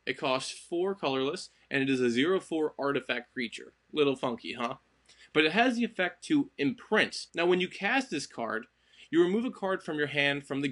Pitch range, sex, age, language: 135-195 Hz, male, 20-39, English